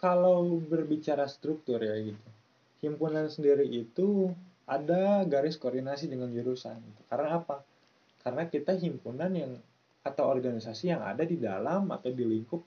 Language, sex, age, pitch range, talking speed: Indonesian, male, 20-39, 120-155 Hz, 135 wpm